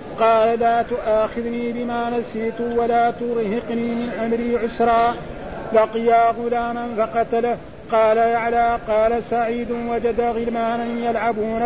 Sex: male